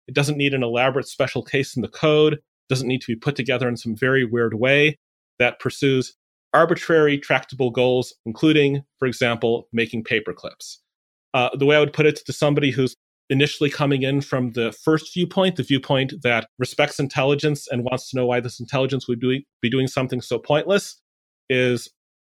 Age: 30-49